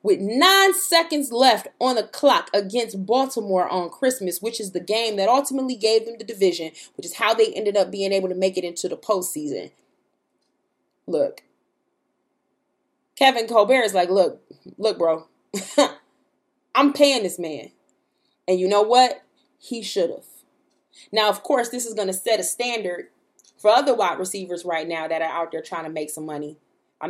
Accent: American